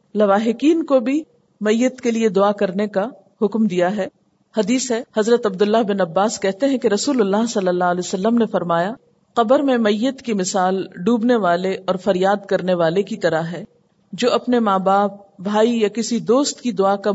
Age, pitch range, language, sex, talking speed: 50-69, 185-240 Hz, Urdu, female, 190 wpm